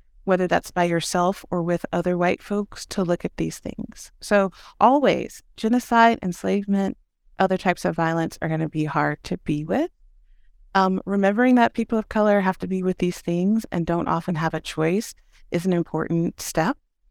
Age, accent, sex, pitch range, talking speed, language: 30-49, American, female, 165-215 Hz, 180 wpm, English